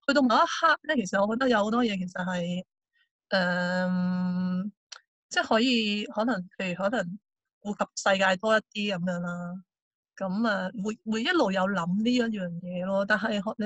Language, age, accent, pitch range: Chinese, 20-39, native, 185-225 Hz